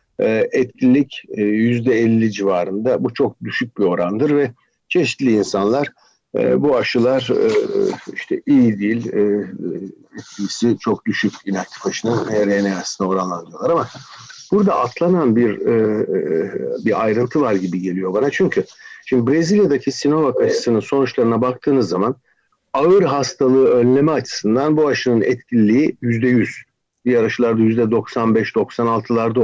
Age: 60-79